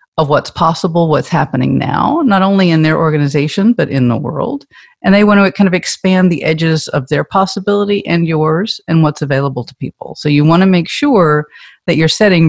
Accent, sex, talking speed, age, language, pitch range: American, female, 205 wpm, 50-69, English, 145-190 Hz